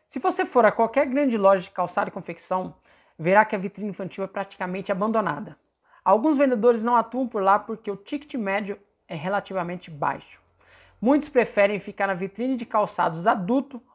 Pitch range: 195-260 Hz